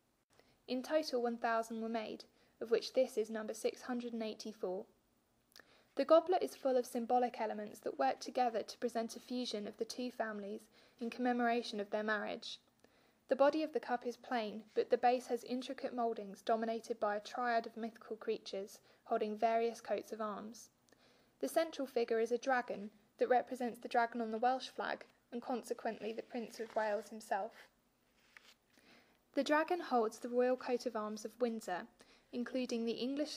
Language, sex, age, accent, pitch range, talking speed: English, female, 10-29, British, 220-250 Hz, 165 wpm